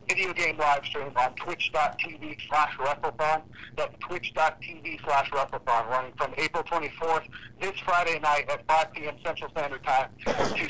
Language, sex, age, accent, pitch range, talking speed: English, male, 50-69, American, 145-175 Hz, 125 wpm